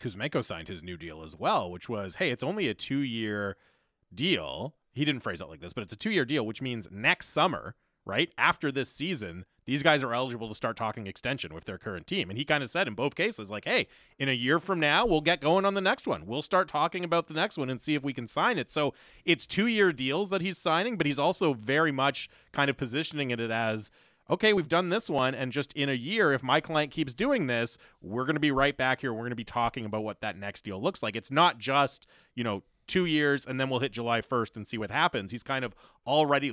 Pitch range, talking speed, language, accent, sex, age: 115-150 Hz, 255 wpm, English, American, male, 30-49